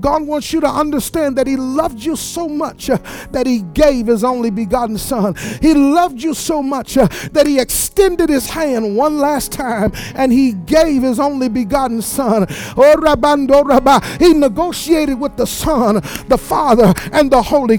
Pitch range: 240-310 Hz